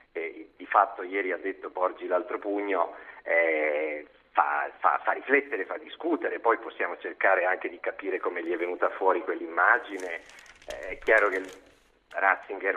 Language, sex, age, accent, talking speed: Italian, male, 40-59, native, 150 wpm